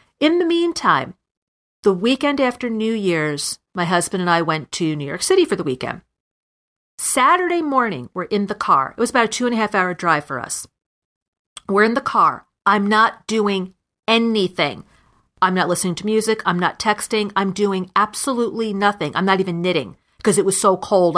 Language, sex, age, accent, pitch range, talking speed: English, female, 40-59, American, 175-230 Hz, 190 wpm